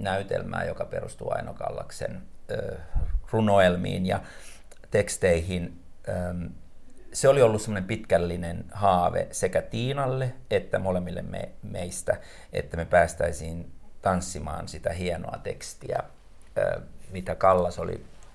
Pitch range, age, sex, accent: 85-100 Hz, 50-69, male, native